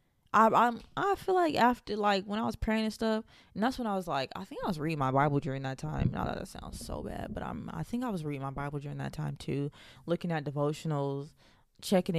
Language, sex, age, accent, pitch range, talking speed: English, female, 20-39, American, 145-190 Hz, 245 wpm